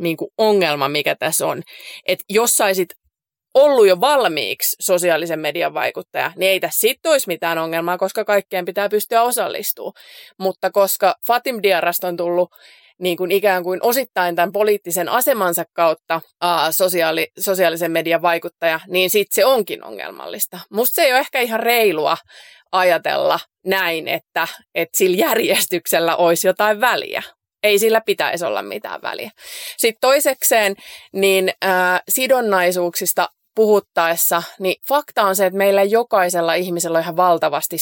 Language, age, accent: Finnish, 20-39, native